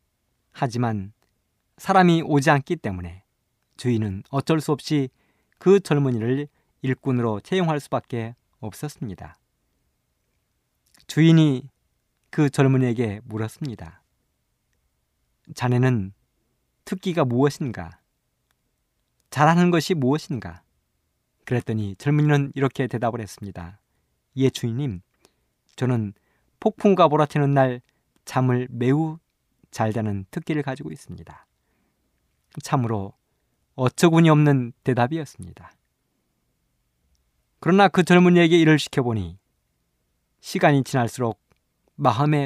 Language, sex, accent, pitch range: Korean, male, native, 100-145 Hz